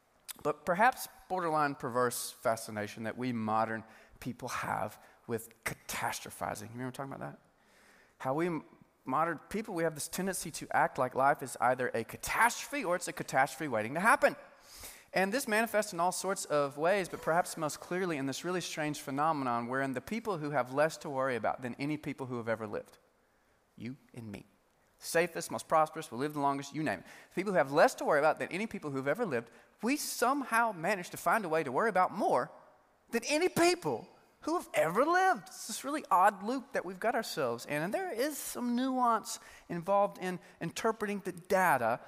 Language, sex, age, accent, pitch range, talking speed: English, male, 30-49, American, 130-200 Hz, 195 wpm